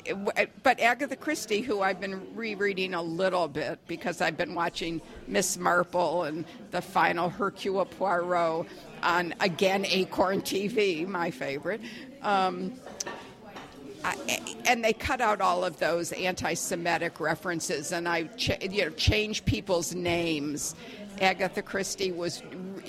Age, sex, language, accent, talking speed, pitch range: 50-69, female, English, American, 130 wpm, 175-210 Hz